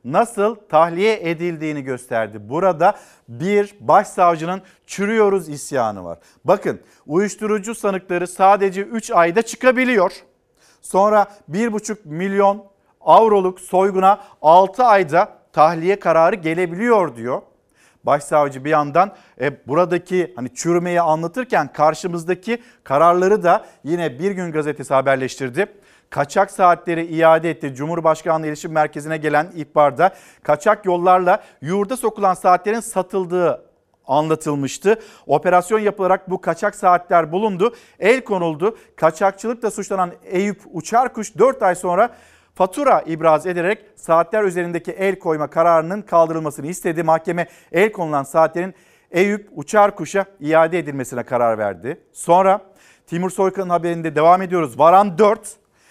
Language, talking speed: Turkish, 110 wpm